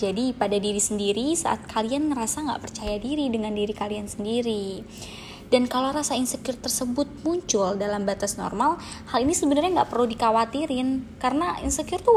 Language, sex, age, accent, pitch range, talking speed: Indonesian, female, 20-39, native, 210-265 Hz, 160 wpm